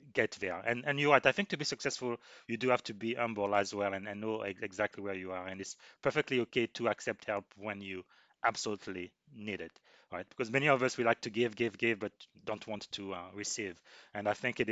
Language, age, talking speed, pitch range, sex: English, 30-49, 240 wpm, 100-115 Hz, male